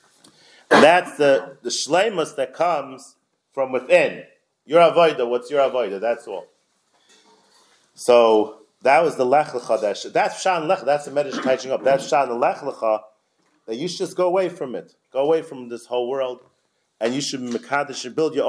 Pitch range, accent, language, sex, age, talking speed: 115-155 Hz, American, English, male, 30-49, 175 wpm